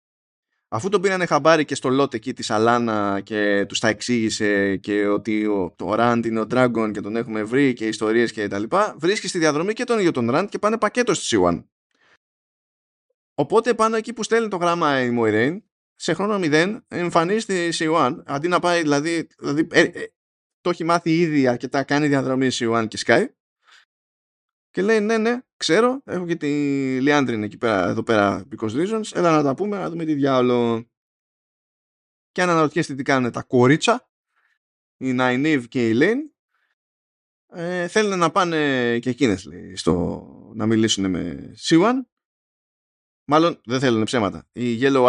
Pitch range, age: 115-175 Hz, 20-39